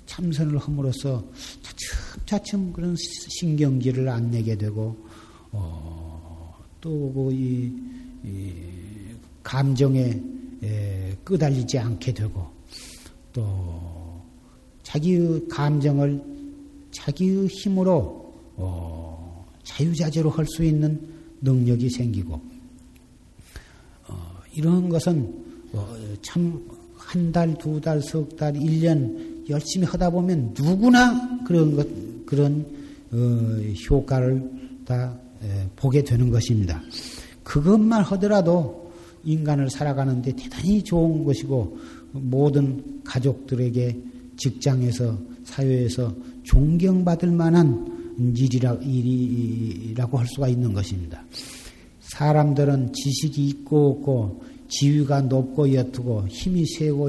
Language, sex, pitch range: Korean, male, 115-160 Hz